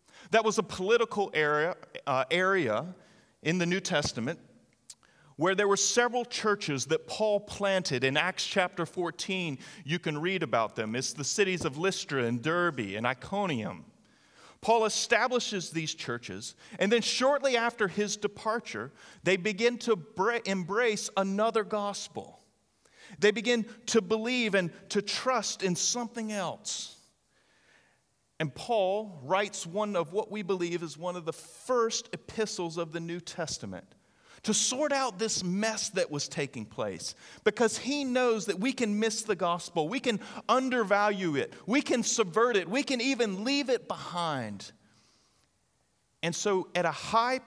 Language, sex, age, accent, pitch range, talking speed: English, male, 40-59, American, 160-225 Hz, 150 wpm